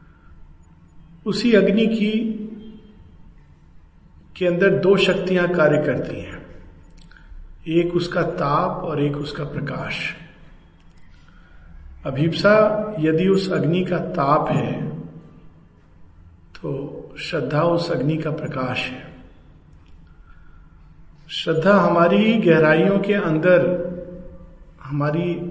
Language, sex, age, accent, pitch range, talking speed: Hindi, male, 50-69, native, 135-175 Hz, 85 wpm